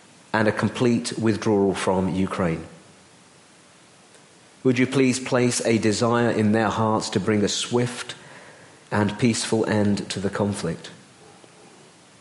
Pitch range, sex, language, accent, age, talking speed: 105-115 Hz, male, English, British, 40-59, 125 wpm